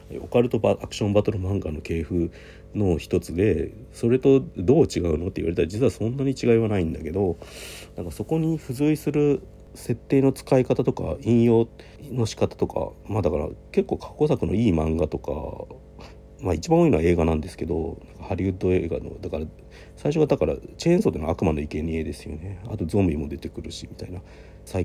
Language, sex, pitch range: Japanese, male, 80-115 Hz